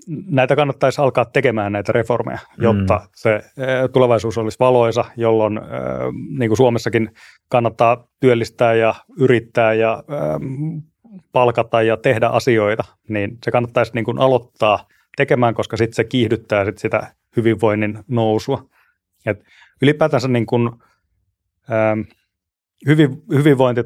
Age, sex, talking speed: 30-49, male, 120 wpm